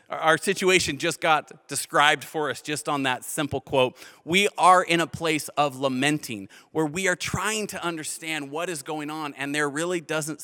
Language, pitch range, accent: English, 155-205 Hz, American